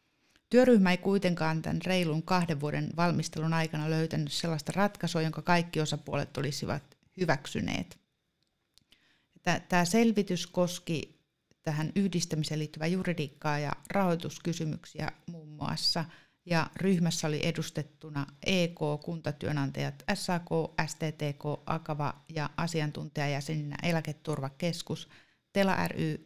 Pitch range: 150-180 Hz